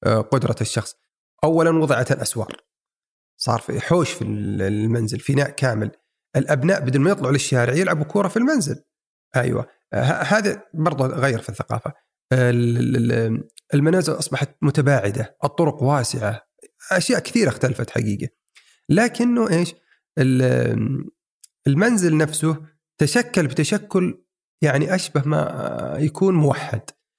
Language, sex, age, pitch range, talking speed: Arabic, male, 40-59, 125-180 Hz, 115 wpm